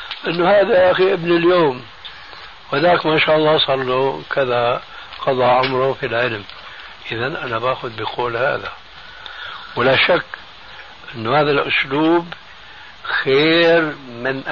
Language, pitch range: Arabic, 125-155 Hz